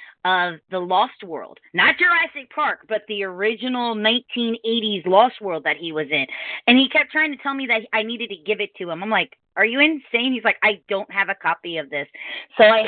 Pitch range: 170-230 Hz